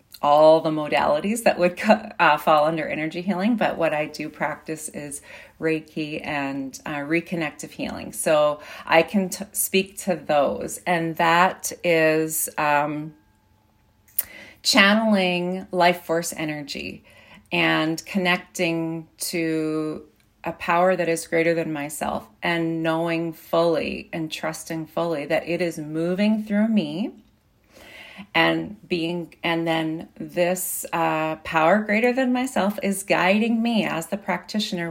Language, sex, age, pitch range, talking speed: English, female, 40-59, 160-190 Hz, 125 wpm